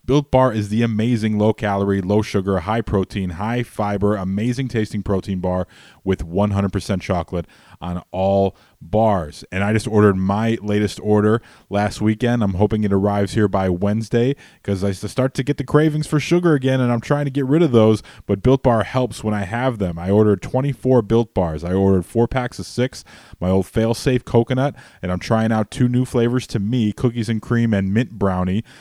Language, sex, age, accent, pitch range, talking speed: English, male, 20-39, American, 100-120 Hz, 190 wpm